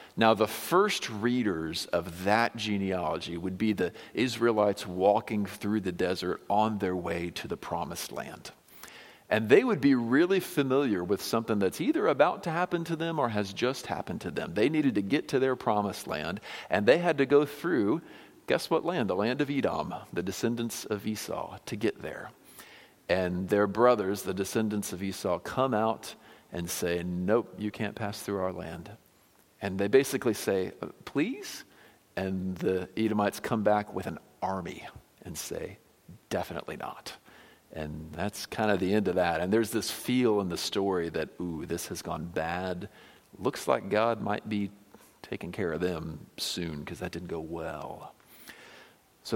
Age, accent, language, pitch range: 50-69, American, English, 95-115 Hz